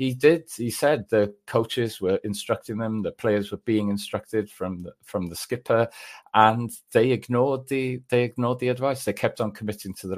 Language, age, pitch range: English, 40-59, 95-115 Hz